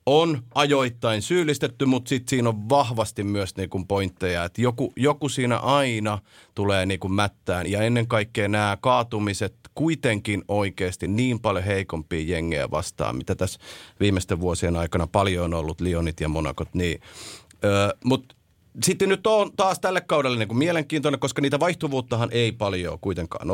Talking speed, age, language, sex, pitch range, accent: 150 wpm, 30-49, Finnish, male, 100-130 Hz, native